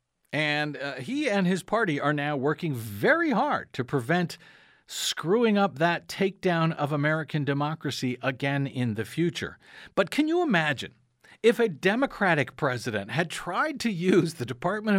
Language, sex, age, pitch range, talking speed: English, male, 50-69, 135-200 Hz, 150 wpm